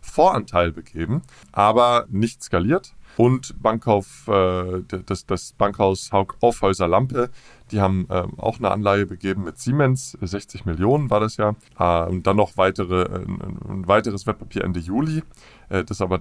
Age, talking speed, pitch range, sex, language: 20-39, 130 wpm, 95-120 Hz, male, German